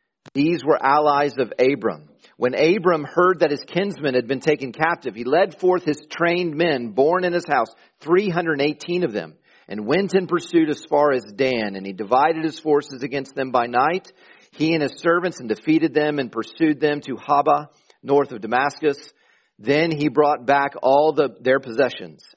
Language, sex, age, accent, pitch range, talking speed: English, male, 40-59, American, 130-165 Hz, 180 wpm